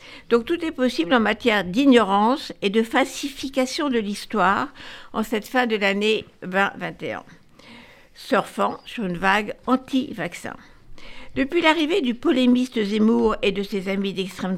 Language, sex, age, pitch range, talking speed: French, female, 60-79, 195-260 Hz, 135 wpm